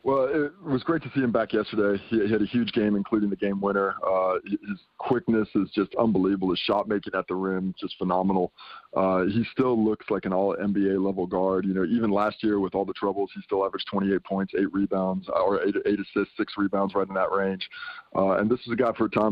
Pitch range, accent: 100-115 Hz, American